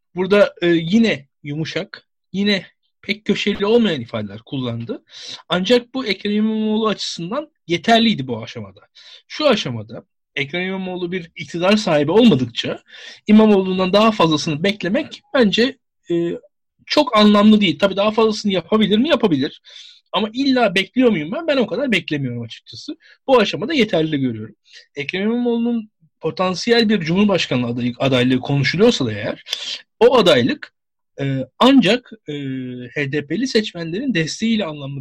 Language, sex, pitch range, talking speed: Turkish, male, 145-215 Hz, 120 wpm